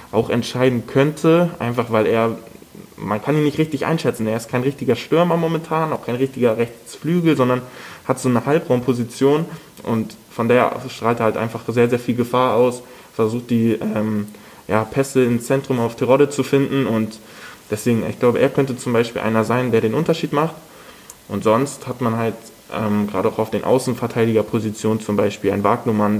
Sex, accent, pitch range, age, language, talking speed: male, German, 110-135 Hz, 20-39, German, 180 wpm